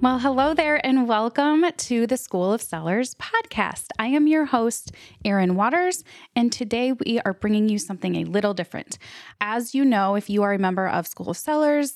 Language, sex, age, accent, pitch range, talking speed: English, female, 20-39, American, 180-240 Hz, 195 wpm